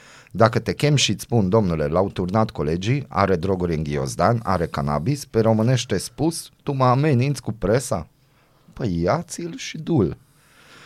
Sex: male